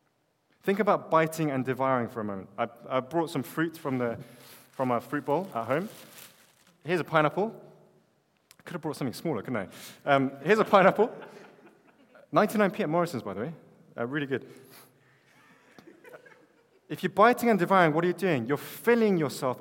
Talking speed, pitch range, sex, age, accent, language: 175 wpm, 125-160 Hz, male, 20-39, British, English